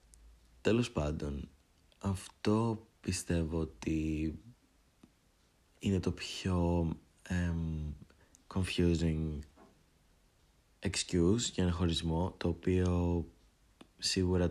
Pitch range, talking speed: 80-90 Hz, 70 wpm